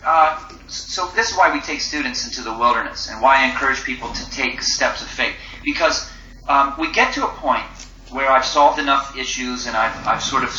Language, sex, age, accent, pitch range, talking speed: English, male, 40-59, American, 125-145 Hz, 215 wpm